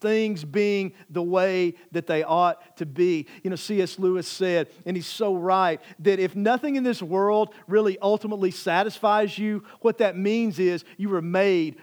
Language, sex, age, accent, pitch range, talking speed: English, male, 40-59, American, 190-265 Hz, 180 wpm